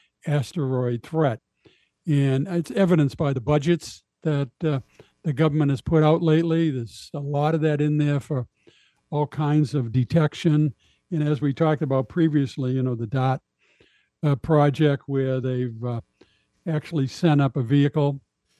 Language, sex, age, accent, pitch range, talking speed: English, male, 60-79, American, 135-160 Hz, 155 wpm